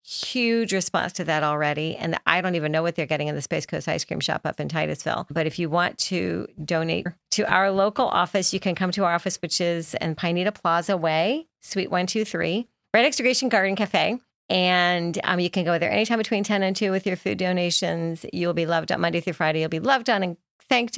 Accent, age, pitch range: American, 40-59, 160-195 Hz